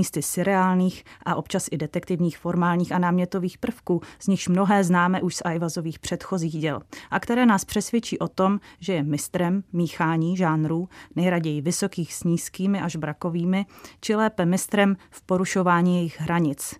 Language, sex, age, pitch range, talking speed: Czech, female, 30-49, 165-190 Hz, 155 wpm